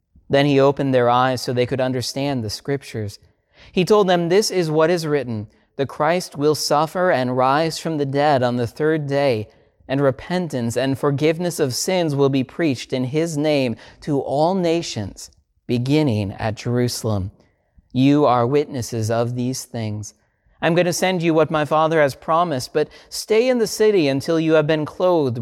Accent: American